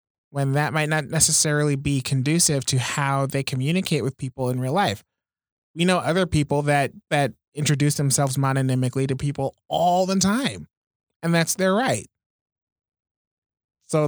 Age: 20-39